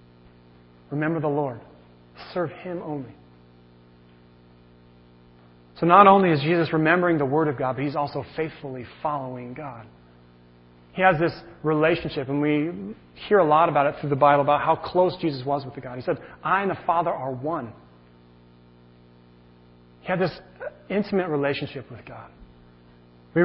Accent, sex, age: American, male, 30-49